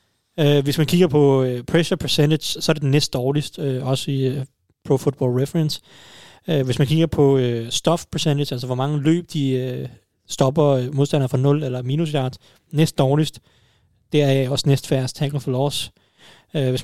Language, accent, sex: Danish, native, male